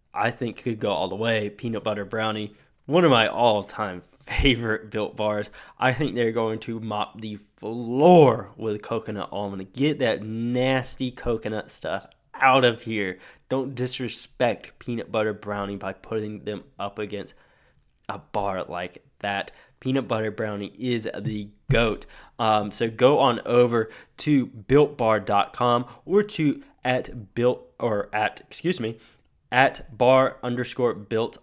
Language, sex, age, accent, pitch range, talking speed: English, male, 10-29, American, 105-130 Hz, 145 wpm